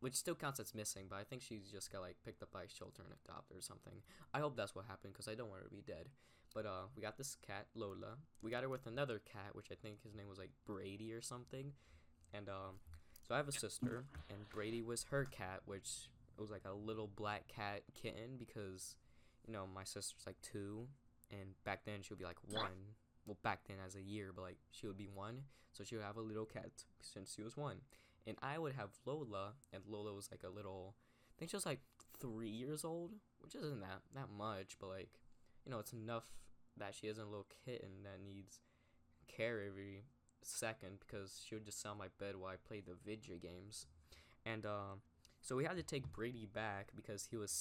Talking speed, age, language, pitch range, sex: 230 wpm, 10-29, English, 95-120 Hz, male